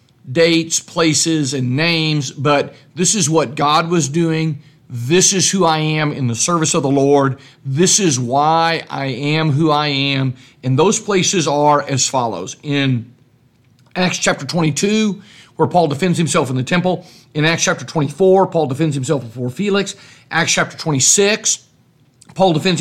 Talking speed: 160 wpm